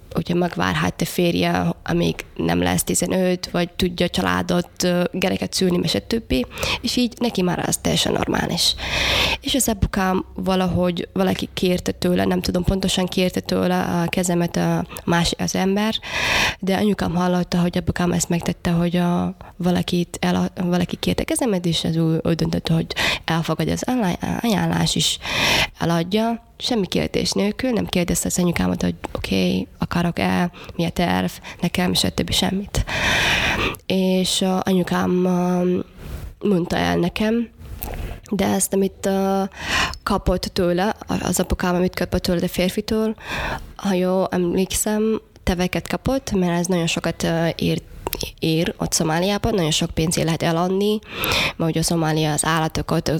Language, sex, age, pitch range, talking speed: Hungarian, female, 20-39, 170-195 Hz, 140 wpm